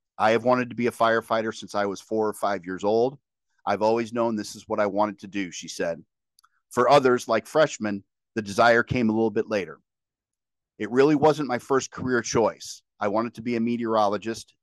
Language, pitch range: English, 100-120 Hz